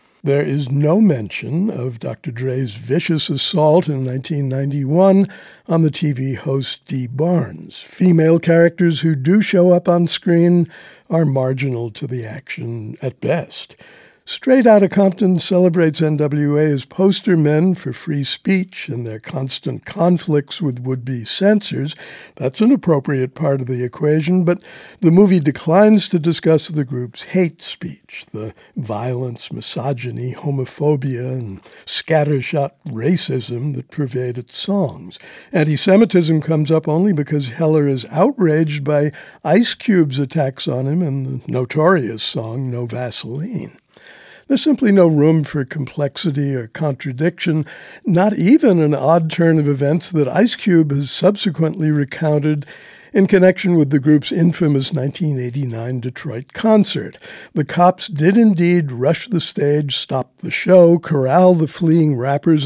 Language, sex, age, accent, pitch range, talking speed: English, male, 60-79, American, 135-175 Hz, 140 wpm